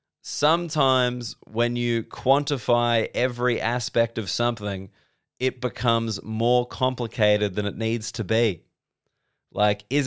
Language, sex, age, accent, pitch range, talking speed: English, male, 20-39, Australian, 110-130 Hz, 115 wpm